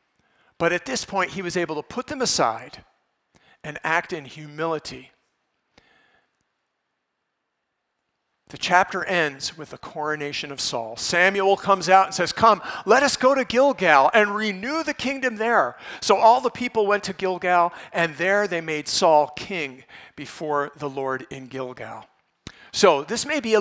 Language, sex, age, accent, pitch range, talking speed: English, male, 50-69, American, 155-215 Hz, 160 wpm